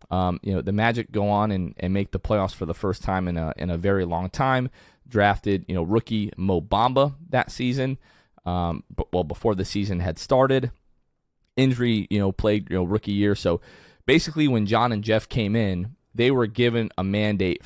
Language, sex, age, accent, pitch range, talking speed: English, male, 20-39, American, 95-120 Hz, 205 wpm